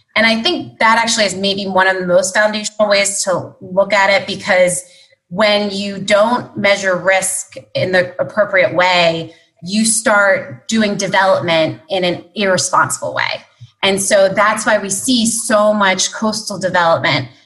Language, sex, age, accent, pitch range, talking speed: English, female, 30-49, American, 175-205 Hz, 155 wpm